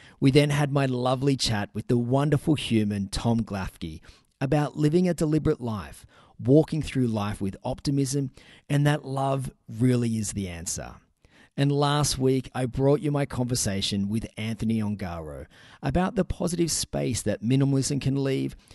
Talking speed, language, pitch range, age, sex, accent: 155 wpm, English, 100-135 Hz, 40-59, male, Australian